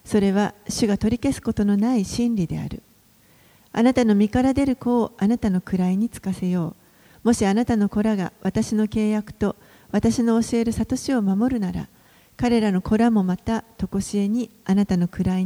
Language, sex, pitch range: Japanese, female, 190-230 Hz